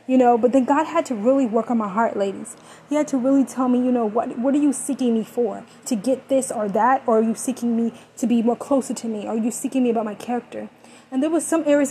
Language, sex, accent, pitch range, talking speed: English, female, American, 225-260 Hz, 285 wpm